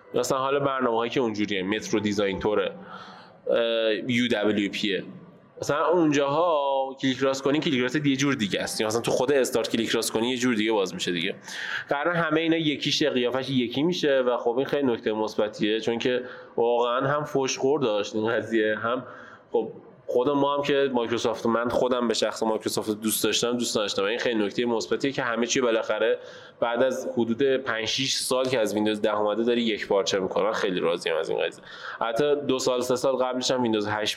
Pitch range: 115-150 Hz